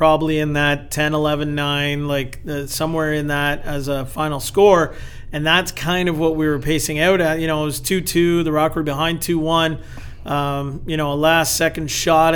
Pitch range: 150-170 Hz